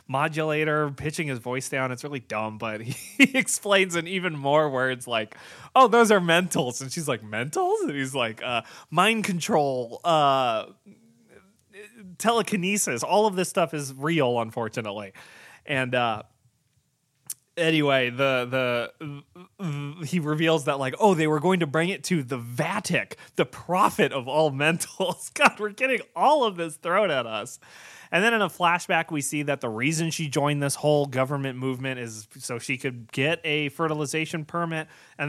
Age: 20-39